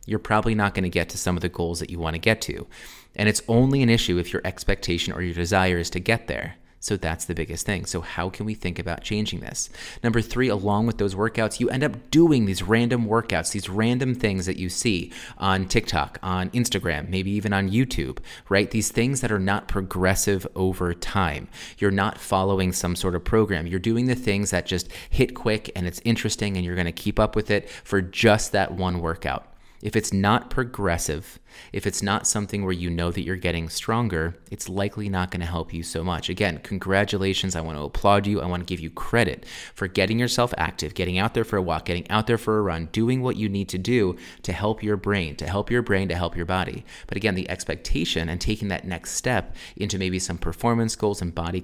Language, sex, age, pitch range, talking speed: English, male, 30-49, 90-110 Hz, 230 wpm